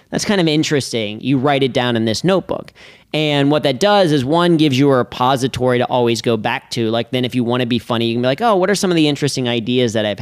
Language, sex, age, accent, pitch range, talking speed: English, male, 30-49, American, 125-150 Hz, 280 wpm